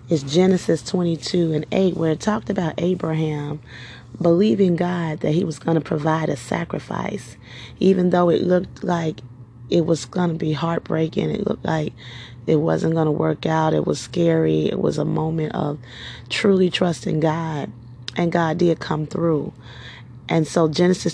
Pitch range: 140-175 Hz